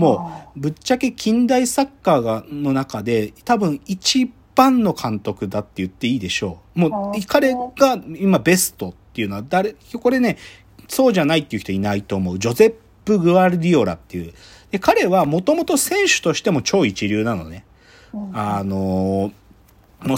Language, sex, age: Japanese, male, 40-59